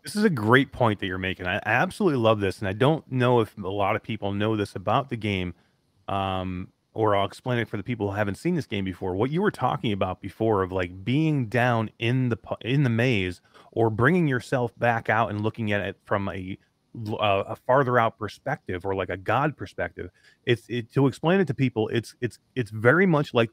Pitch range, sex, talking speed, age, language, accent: 105-140 Hz, male, 225 wpm, 30-49, English, American